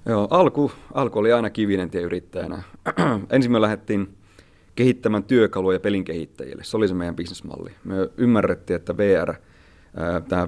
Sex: male